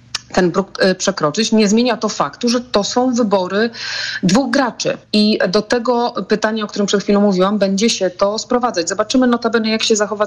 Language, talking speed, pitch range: Polish, 180 wpm, 180-215 Hz